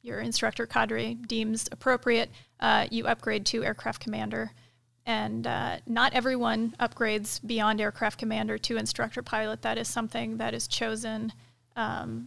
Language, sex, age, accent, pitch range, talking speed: English, female, 30-49, American, 180-230 Hz, 140 wpm